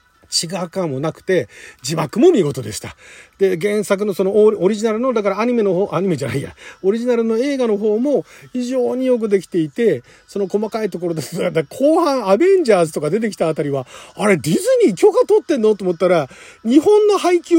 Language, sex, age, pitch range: Japanese, male, 40-59, 165-245 Hz